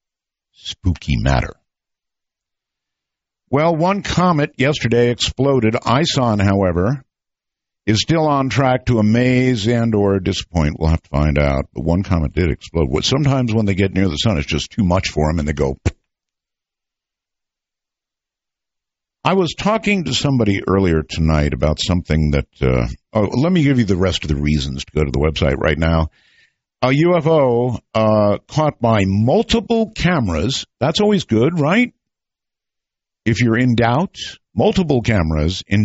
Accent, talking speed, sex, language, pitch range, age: American, 150 wpm, male, English, 85-145 Hz, 60-79